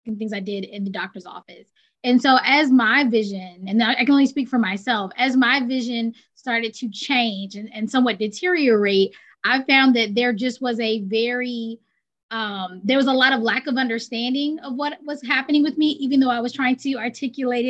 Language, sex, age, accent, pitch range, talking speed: English, female, 20-39, American, 230-270 Hz, 205 wpm